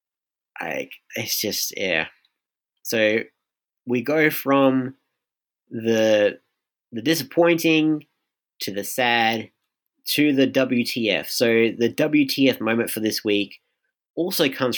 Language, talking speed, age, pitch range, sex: English, 105 wpm, 30-49, 110-150 Hz, male